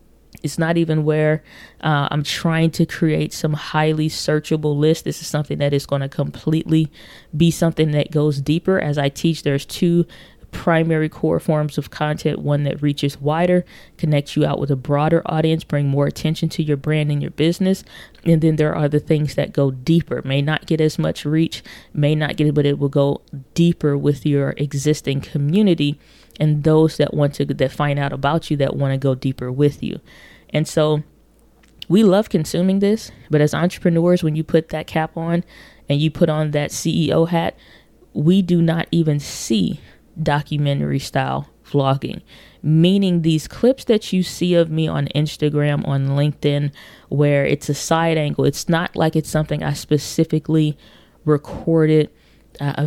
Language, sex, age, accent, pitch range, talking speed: English, female, 20-39, American, 145-165 Hz, 180 wpm